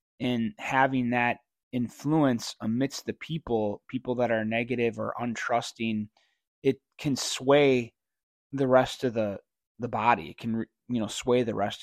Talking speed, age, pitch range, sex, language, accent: 145 wpm, 20-39, 105-130 Hz, male, English, American